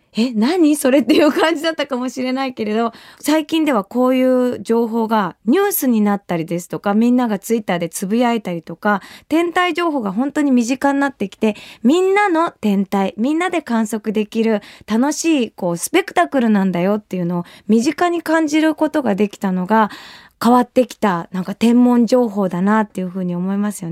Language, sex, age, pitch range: Japanese, female, 20-39, 205-300 Hz